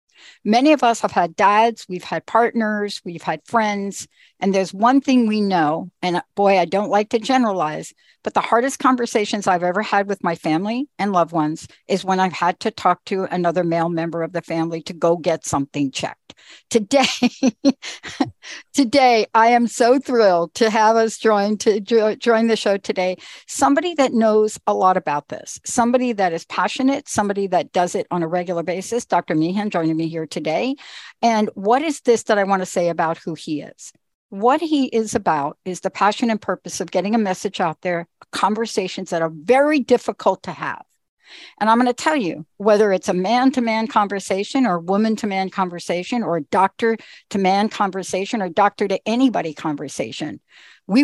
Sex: female